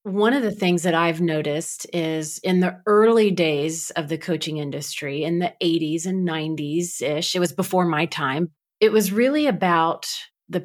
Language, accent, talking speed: English, American, 175 wpm